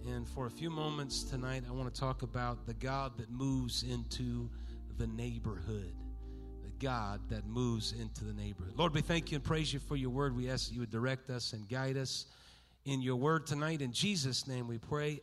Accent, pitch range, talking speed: American, 120-150 Hz, 215 wpm